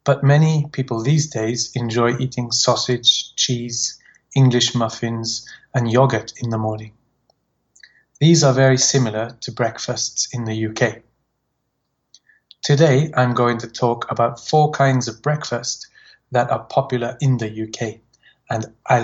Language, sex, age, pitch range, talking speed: English, male, 30-49, 115-135 Hz, 135 wpm